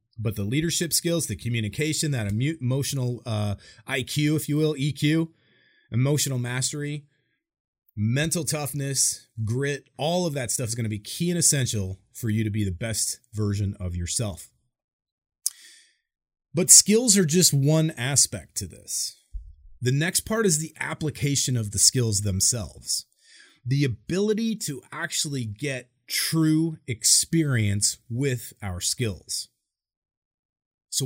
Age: 30-49